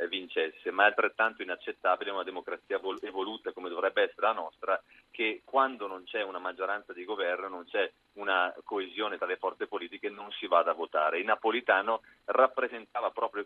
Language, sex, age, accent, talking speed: Italian, male, 30-49, native, 175 wpm